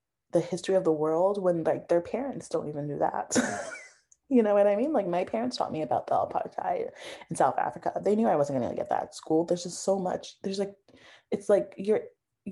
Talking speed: 225 wpm